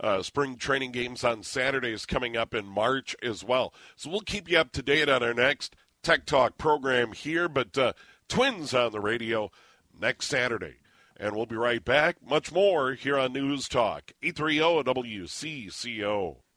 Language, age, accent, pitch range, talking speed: English, 50-69, American, 120-145 Hz, 170 wpm